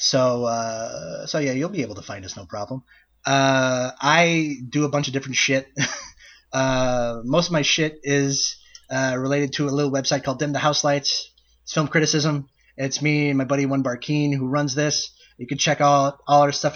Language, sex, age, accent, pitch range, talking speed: English, male, 20-39, American, 130-160 Hz, 205 wpm